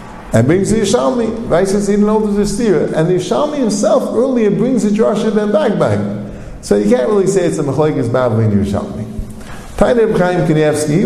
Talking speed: 180 wpm